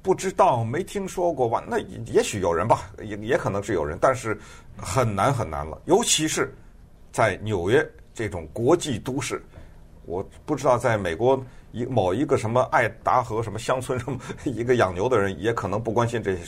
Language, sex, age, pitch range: Chinese, male, 50-69, 80-135 Hz